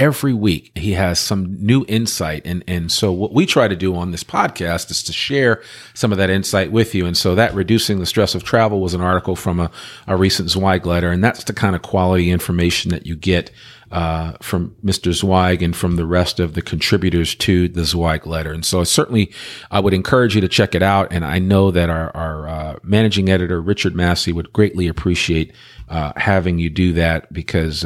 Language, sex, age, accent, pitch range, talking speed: English, male, 40-59, American, 85-105 Hz, 215 wpm